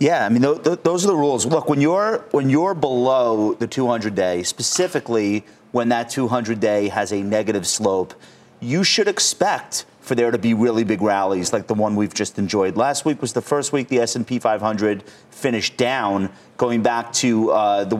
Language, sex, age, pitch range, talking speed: English, male, 30-49, 110-140 Hz, 215 wpm